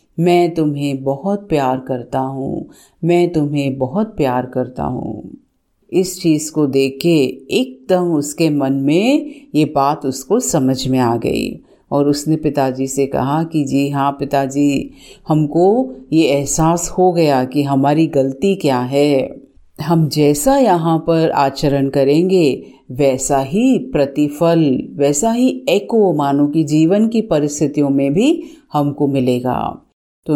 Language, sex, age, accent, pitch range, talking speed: Hindi, female, 50-69, native, 140-175 Hz, 135 wpm